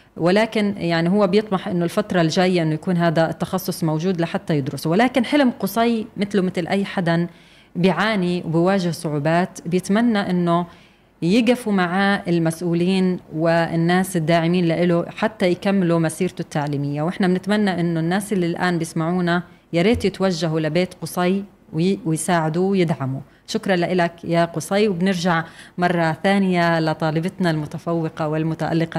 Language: Arabic